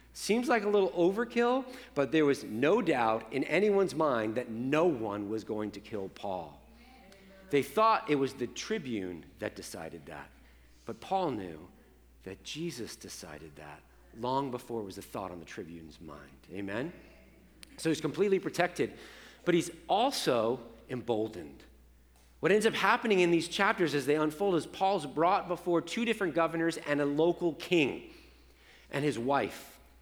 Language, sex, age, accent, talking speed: English, male, 40-59, American, 160 wpm